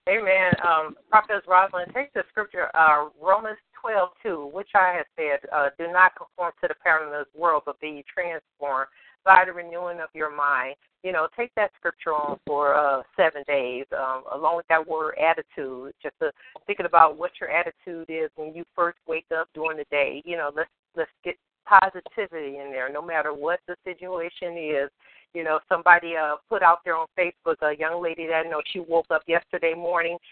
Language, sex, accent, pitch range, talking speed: English, female, American, 155-185 Hz, 200 wpm